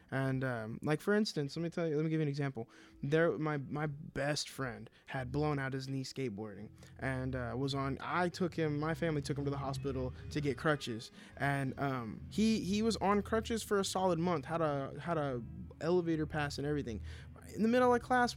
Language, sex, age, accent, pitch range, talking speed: English, male, 20-39, American, 135-195 Hz, 220 wpm